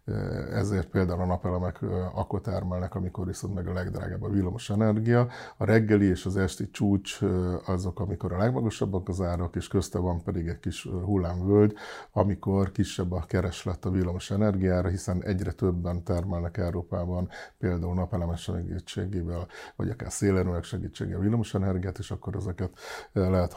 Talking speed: 150 wpm